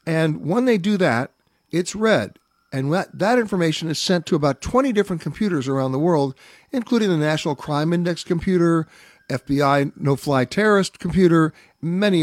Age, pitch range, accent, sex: 50-69, 140-180 Hz, American, male